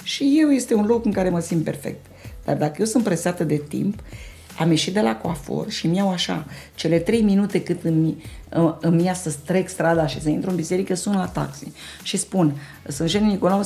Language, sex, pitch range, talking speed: Romanian, female, 160-200 Hz, 210 wpm